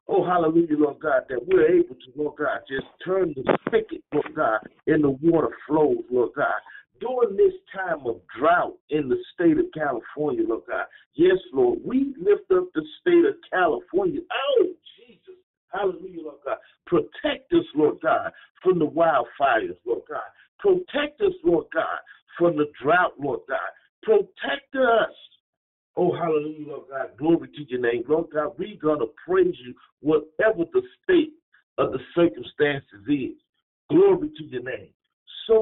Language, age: English, 50-69